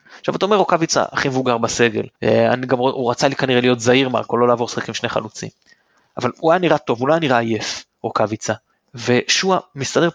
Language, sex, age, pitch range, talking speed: Hebrew, male, 30-49, 120-185 Hz, 220 wpm